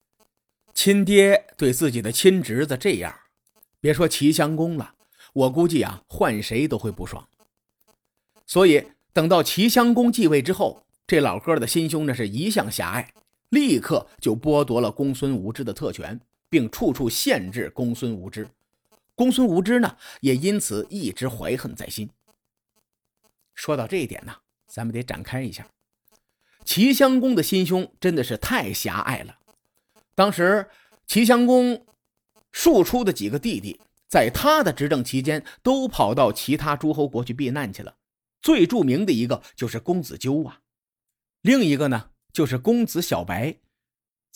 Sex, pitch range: male, 125-210 Hz